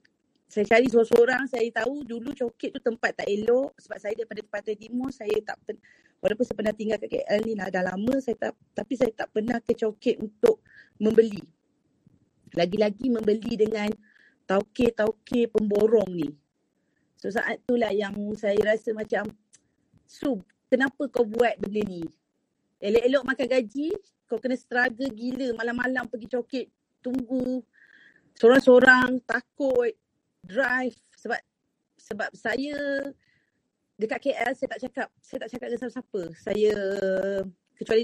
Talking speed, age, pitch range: 135 wpm, 30-49, 210-255 Hz